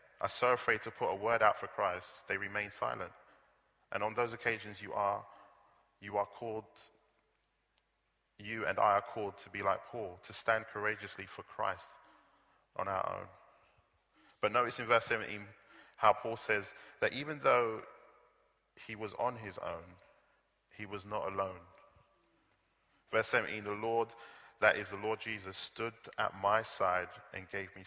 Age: 20-39